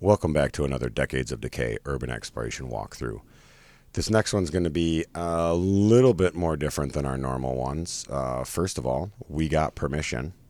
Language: English